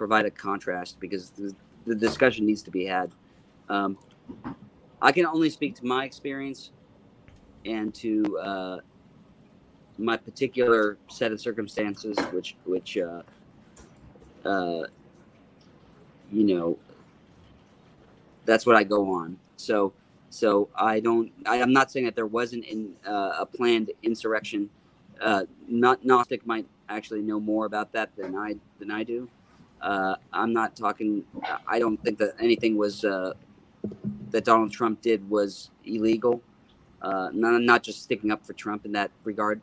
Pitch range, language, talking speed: 100-120 Hz, English, 145 wpm